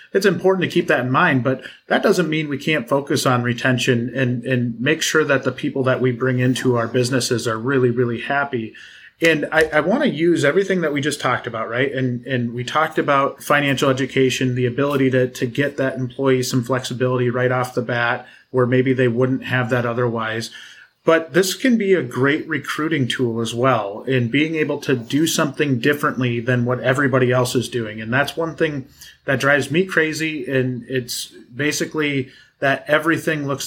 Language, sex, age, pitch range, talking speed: English, male, 30-49, 125-150 Hz, 195 wpm